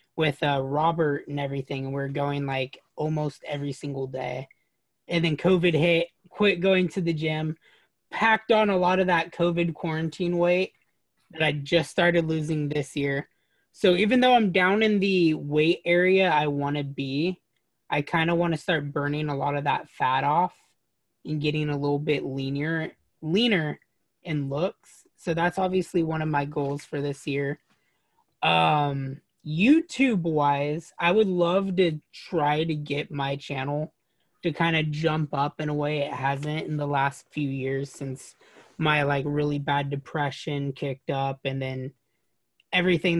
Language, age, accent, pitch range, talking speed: English, 20-39, American, 145-170 Hz, 165 wpm